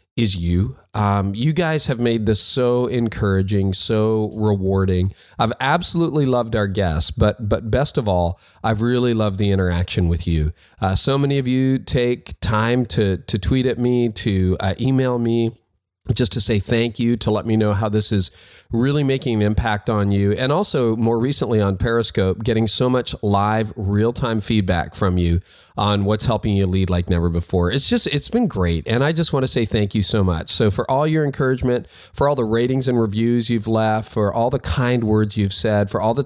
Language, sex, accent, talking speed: English, male, American, 205 wpm